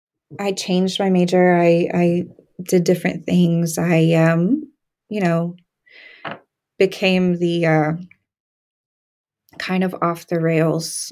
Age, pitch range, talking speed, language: 20-39, 165-200 Hz, 115 wpm, English